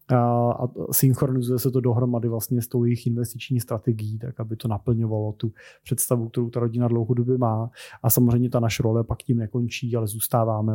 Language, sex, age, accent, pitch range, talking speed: Czech, male, 30-49, native, 115-130 Hz, 180 wpm